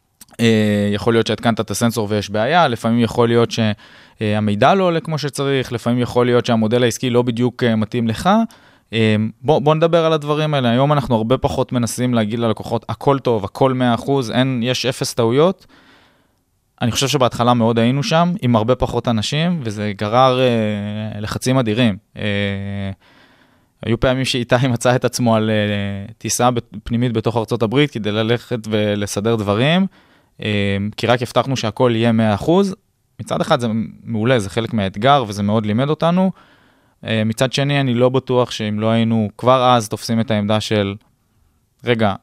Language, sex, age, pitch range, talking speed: Hebrew, male, 20-39, 105-130 Hz, 155 wpm